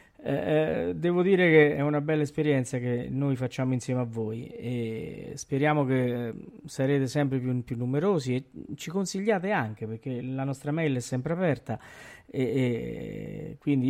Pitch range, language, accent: 120-150 Hz, Italian, native